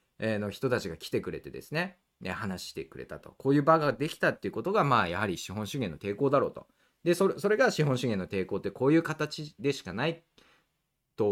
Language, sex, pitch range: Japanese, male, 115-185 Hz